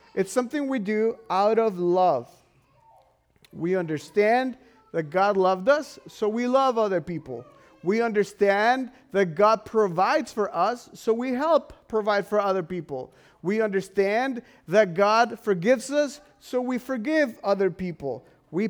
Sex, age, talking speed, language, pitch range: male, 40-59, 140 wpm, English, 180-235 Hz